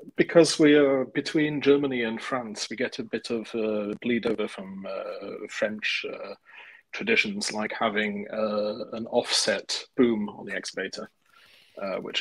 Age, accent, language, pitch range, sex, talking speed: 30-49, British, English, 110-135 Hz, male, 145 wpm